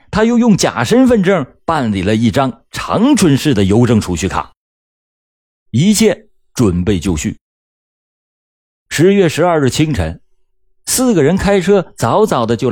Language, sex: Chinese, male